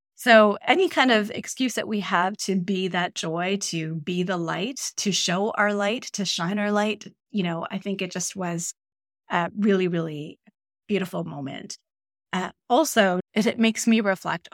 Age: 20-39